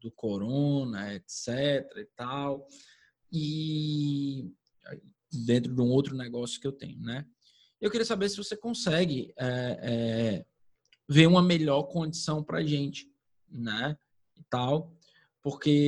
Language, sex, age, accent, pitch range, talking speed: Portuguese, male, 20-39, Brazilian, 125-180 Hz, 115 wpm